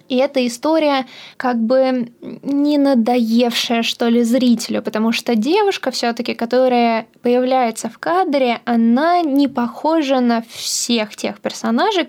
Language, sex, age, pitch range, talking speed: Russian, female, 20-39, 220-255 Hz, 125 wpm